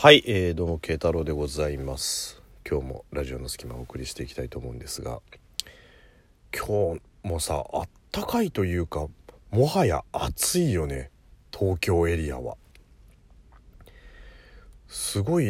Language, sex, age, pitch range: Japanese, male, 40-59, 75-120 Hz